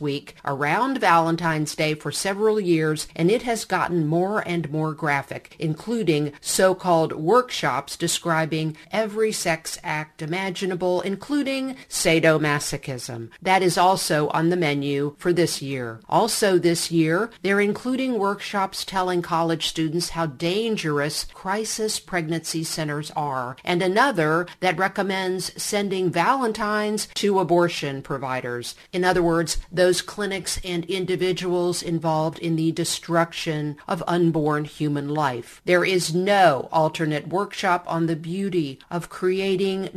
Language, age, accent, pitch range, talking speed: English, 50-69, American, 155-190 Hz, 125 wpm